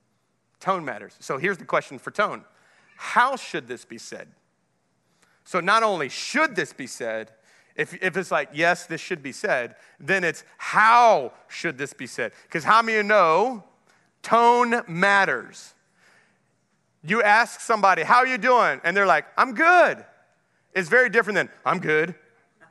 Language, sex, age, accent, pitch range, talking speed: English, male, 30-49, American, 165-230 Hz, 165 wpm